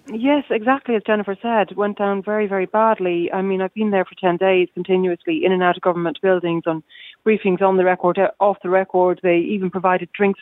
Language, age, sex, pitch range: English, 30-49, female, 175-215 Hz